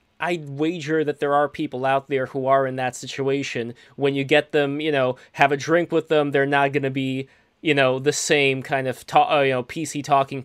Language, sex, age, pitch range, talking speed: English, male, 20-39, 130-145 Hz, 230 wpm